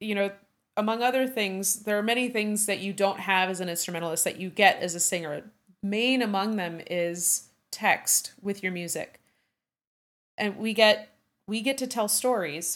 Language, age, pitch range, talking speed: English, 30-49, 175-210 Hz, 180 wpm